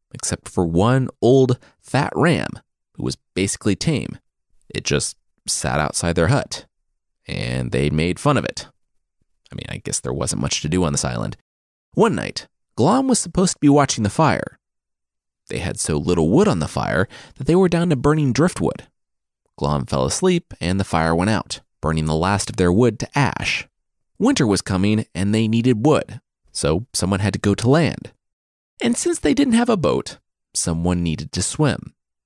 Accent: American